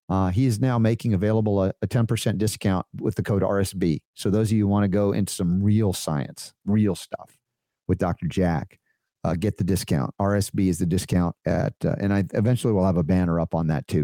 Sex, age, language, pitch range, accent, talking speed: male, 50-69, English, 90-110 Hz, American, 220 wpm